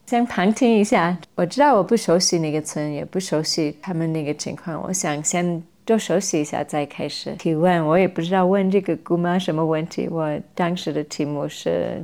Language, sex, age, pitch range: Chinese, female, 30-49, 165-195 Hz